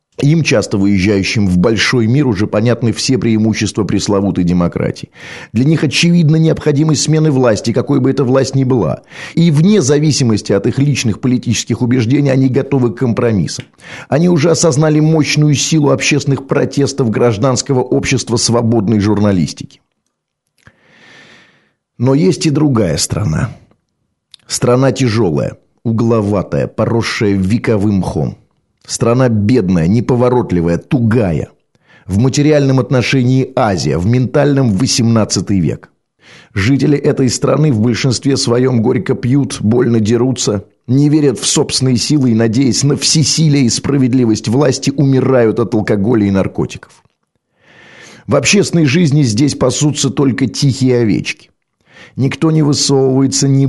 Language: Russian